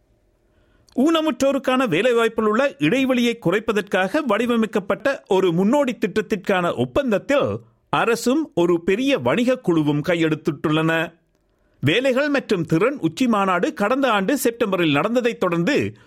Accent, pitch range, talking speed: native, 170-255 Hz, 95 wpm